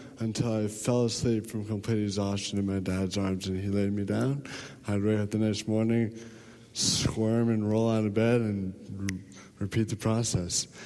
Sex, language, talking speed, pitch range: male, English, 180 wpm, 100-120 Hz